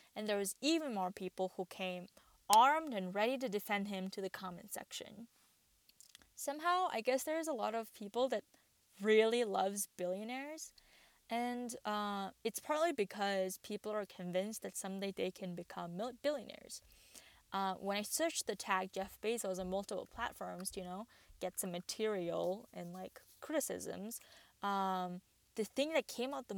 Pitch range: 190-235 Hz